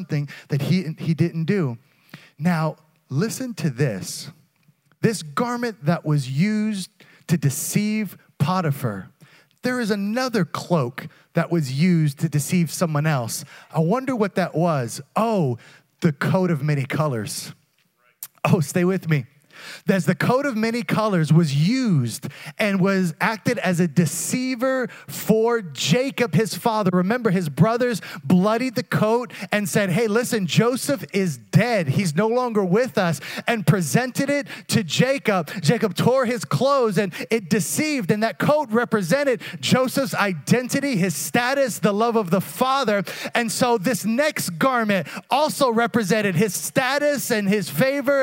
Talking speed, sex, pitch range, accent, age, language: 145 wpm, male, 160-230 Hz, American, 30-49, English